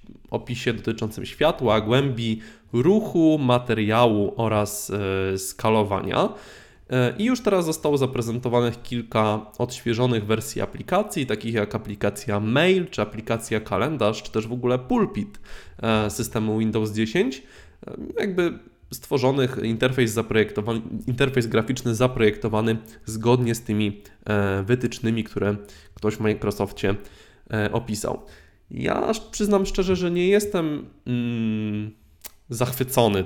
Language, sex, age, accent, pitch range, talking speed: Polish, male, 20-39, native, 110-135 Hz, 95 wpm